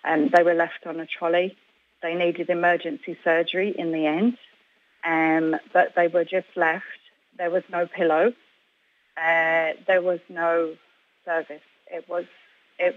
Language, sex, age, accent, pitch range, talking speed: English, female, 30-49, British, 165-185 Hz, 150 wpm